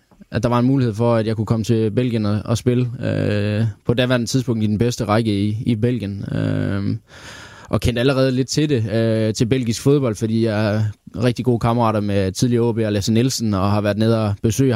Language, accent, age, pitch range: Danish, native, 20-39, 105-125 Hz